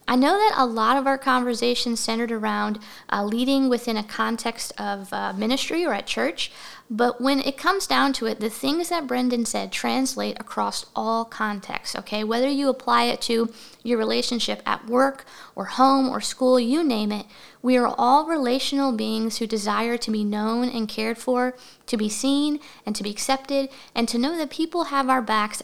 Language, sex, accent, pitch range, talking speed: English, female, American, 225-270 Hz, 190 wpm